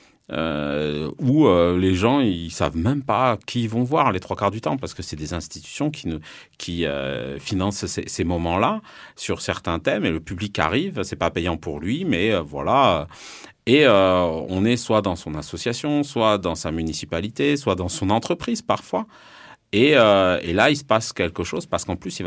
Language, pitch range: French, 80-105 Hz